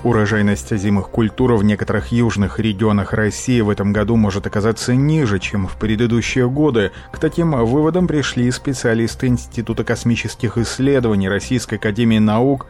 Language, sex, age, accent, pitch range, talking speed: Russian, male, 30-49, native, 100-120 Hz, 135 wpm